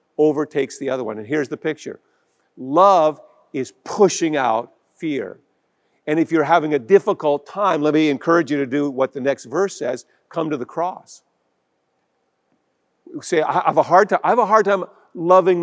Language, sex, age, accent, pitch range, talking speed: English, male, 50-69, American, 130-175 Hz, 165 wpm